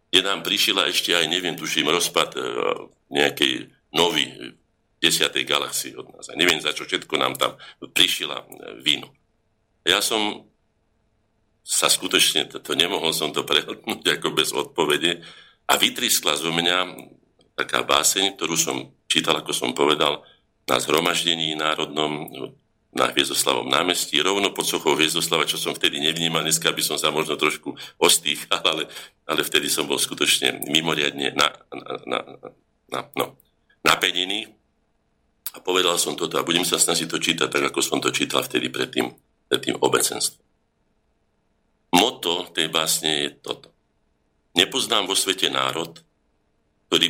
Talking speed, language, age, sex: 140 wpm, Slovak, 50-69, male